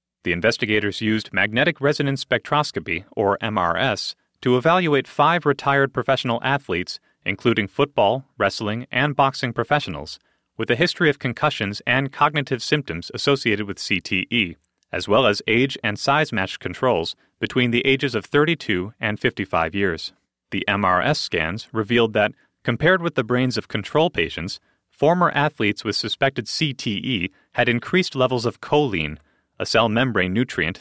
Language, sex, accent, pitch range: English, male, American, 105-140 Hz